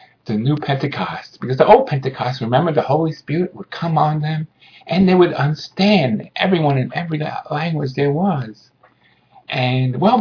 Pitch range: 135-175 Hz